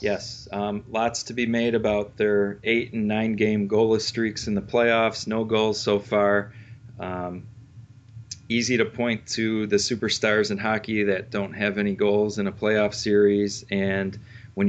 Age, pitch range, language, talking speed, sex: 30-49, 100-115 Hz, English, 170 wpm, male